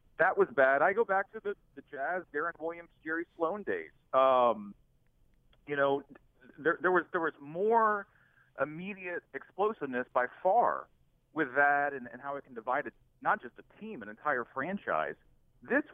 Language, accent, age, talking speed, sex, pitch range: English, American, 40-59, 170 wpm, male, 140-185 Hz